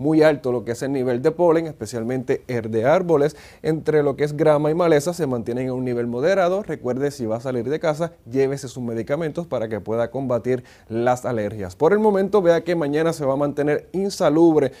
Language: Spanish